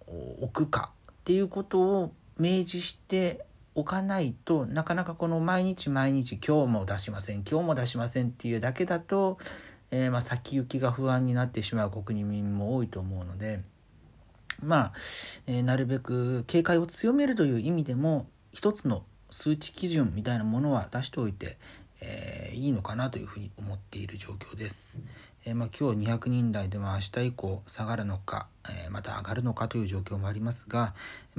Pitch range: 100-150 Hz